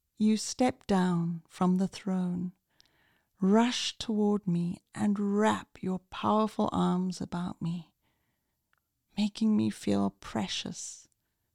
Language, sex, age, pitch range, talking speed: English, female, 40-59, 175-215 Hz, 105 wpm